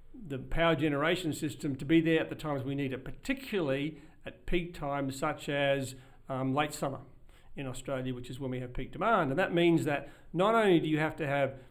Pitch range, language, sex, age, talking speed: 135-165 Hz, English, male, 50-69, 215 wpm